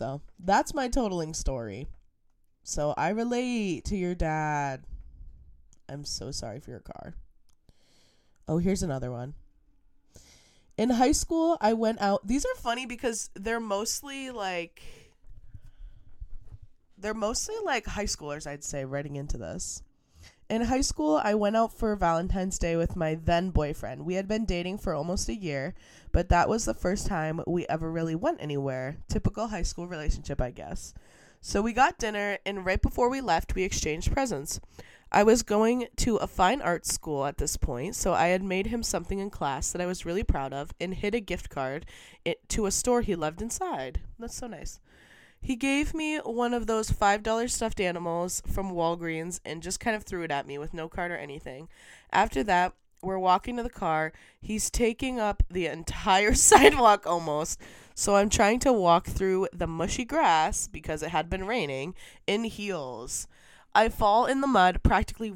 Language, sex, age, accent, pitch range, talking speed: English, female, 20-39, American, 150-220 Hz, 175 wpm